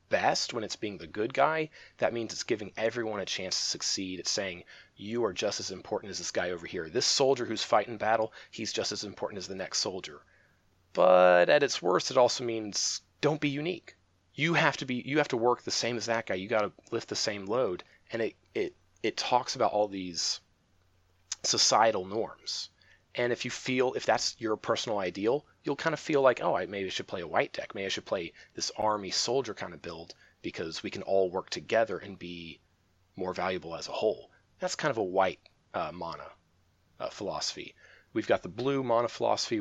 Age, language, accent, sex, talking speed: 30-49, English, American, male, 215 wpm